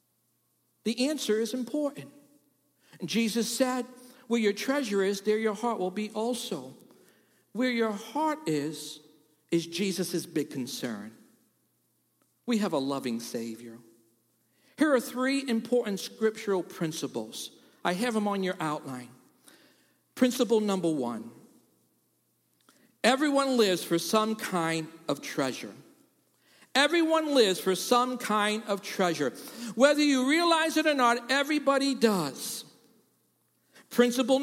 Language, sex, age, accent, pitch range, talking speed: English, male, 50-69, American, 190-265 Hz, 115 wpm